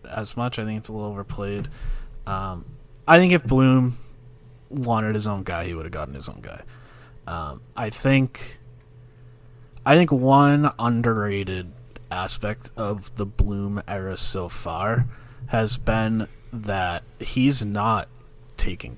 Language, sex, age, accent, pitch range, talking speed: English, male, 30-49, American, 95-125 Hz, 140 wpm